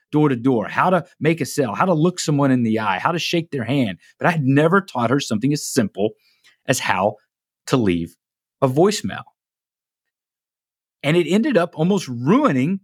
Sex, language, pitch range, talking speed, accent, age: male, English, 125-190 Hz, 190 wpm, American, 30-49